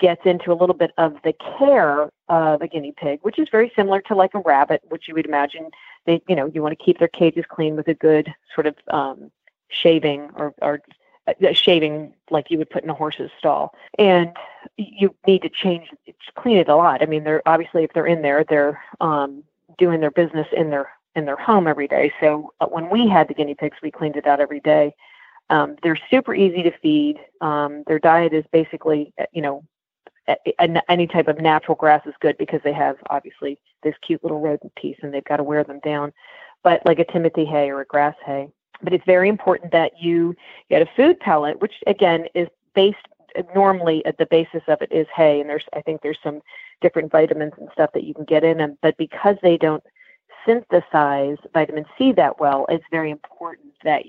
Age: 40-59